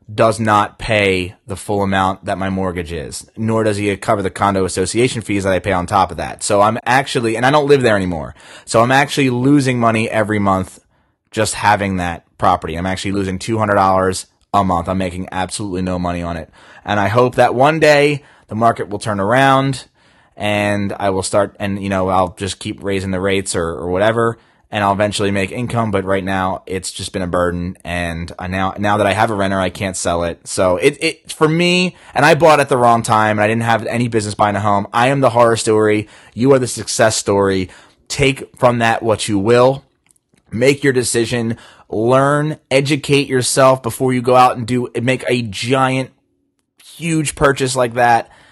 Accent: American